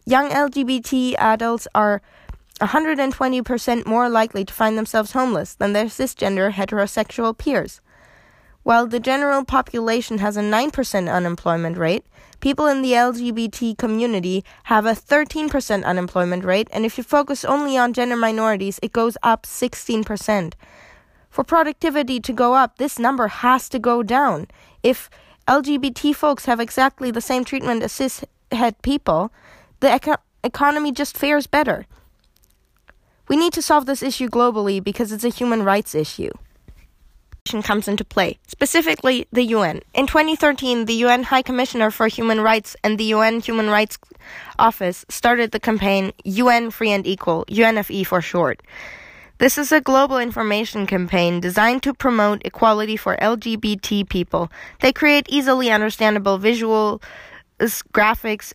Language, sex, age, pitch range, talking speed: German, female, 20-39, 210-265 Hz, 140 wpm